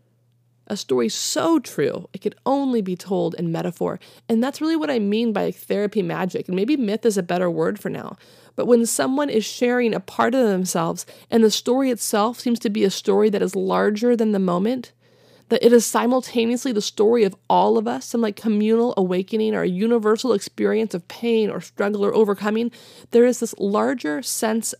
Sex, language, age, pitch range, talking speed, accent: female, English, 30-49, 185-230 Hz, 200 wpm, American